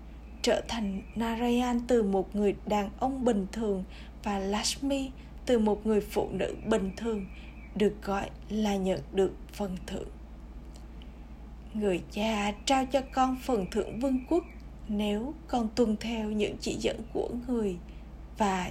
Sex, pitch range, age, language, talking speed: female, 190-235 Hz, 20-39, Vietnamese, 145 wpm